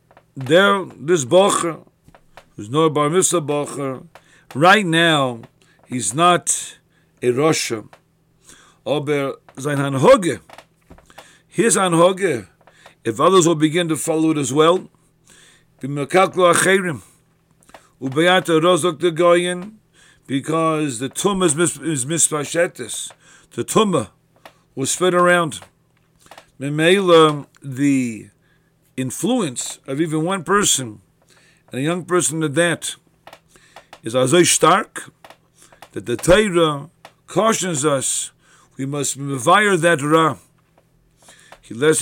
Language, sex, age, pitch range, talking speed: English, male, 50-69, 140-175 Hz, 100 wpm